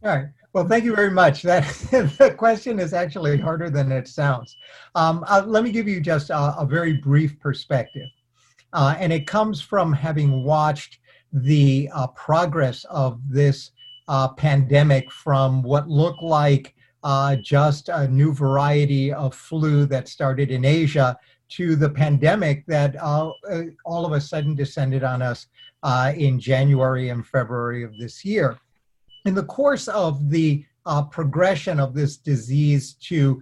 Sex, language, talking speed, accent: male, English, 155 wpm, American